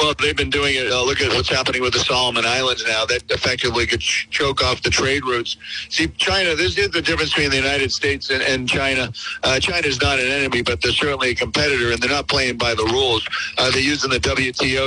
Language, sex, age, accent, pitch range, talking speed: English, male, 50-69, American, 120-140 Hz, 235 wpm